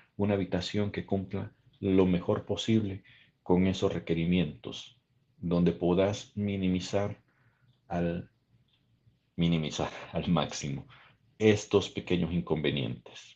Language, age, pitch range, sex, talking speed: Spanish, 50-69, 80-100 Hz, male, 90 wpm